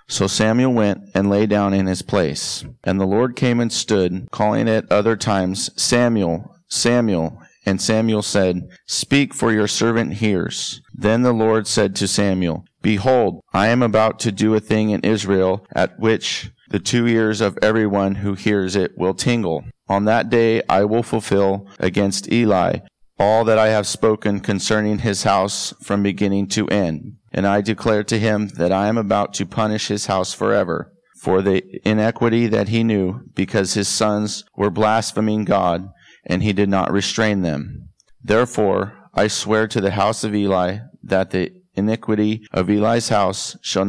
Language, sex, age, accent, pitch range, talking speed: English, male, 40-59, American, 95-110 Hz, 170 wpm